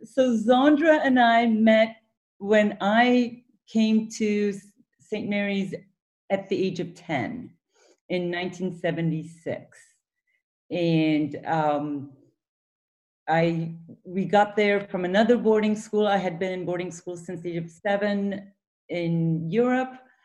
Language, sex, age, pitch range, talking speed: English, female, 40-59, 160-205 Hz, 120 wpm